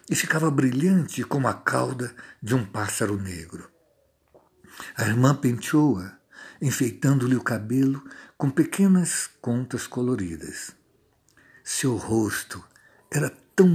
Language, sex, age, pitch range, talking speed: Portuguese, male, 60-79, 105-140 Hz, 105 wpm